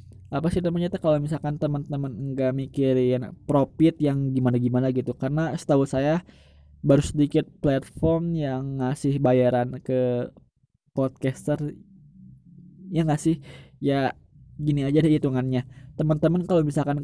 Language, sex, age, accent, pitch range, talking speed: Indonesian, male, 20-39, native, 130-155 Hz, 115 wpm